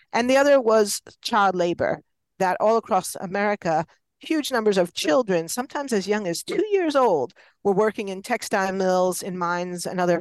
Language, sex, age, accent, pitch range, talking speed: English, female, 50-69, American, 180-235 Hz, 175 wpm